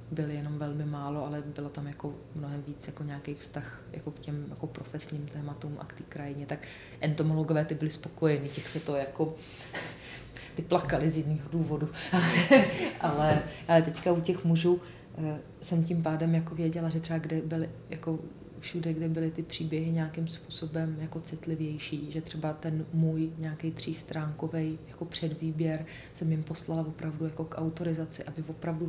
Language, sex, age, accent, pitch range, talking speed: Czech, female, 30-49, native, 150-160 Hz, 165 wpm